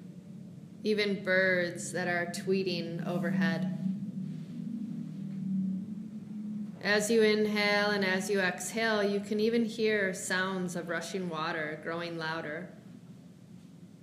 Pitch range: 175-195 Hz